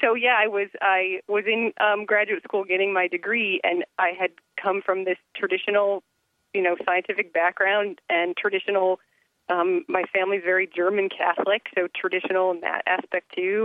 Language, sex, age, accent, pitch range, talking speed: English, female, 30-49, American, 180-215 Hz, 165 wpm